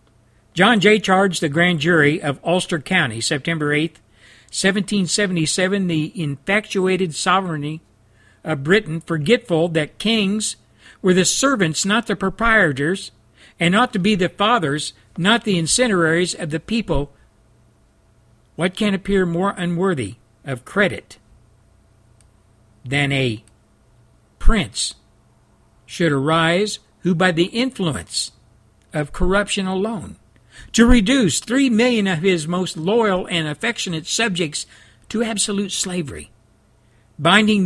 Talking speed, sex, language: 115 wpm, male, English